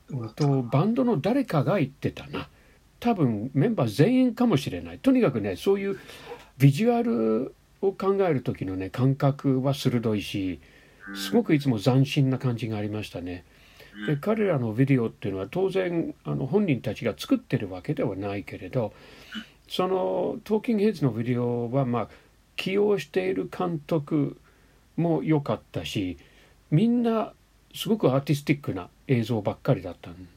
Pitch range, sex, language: 110-165 Hz, male, Japanese